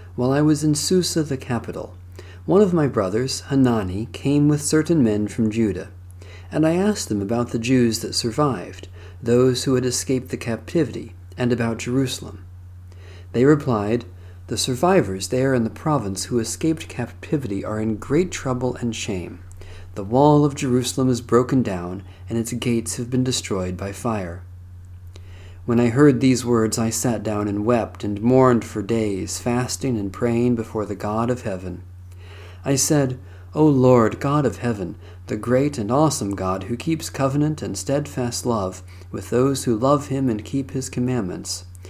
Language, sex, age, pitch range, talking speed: English, male, 40-59, 95-130 Hz, 170 wpm